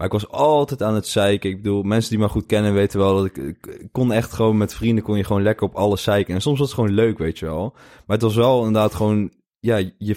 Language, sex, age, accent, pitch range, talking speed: Dutch, male, 20-39, Dutch, 90-110 Hz, 285 wpm